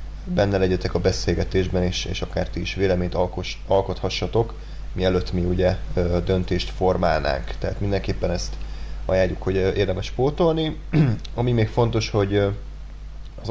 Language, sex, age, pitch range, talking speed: Hungarian, male, 20-39, 90-110 Hz, 135 wpm